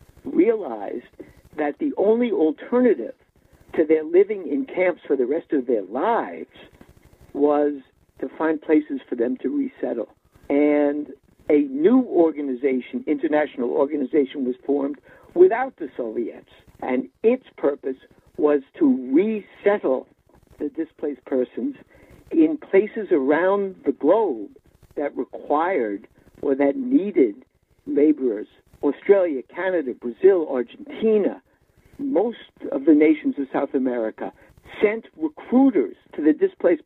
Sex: male